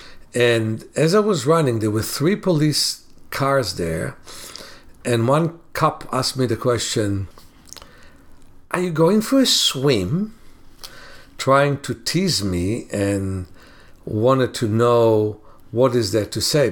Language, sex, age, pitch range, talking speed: English, male, 60-79, 110-155 Hz, 135 wpm